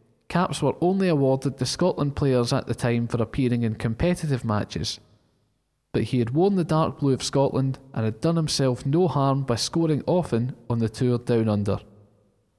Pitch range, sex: 110-150 Hz, male